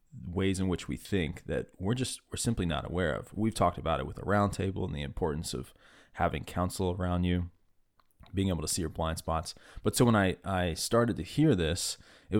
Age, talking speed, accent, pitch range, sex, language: 20-39, 225 wpm, American, 85-105 Hz, male, English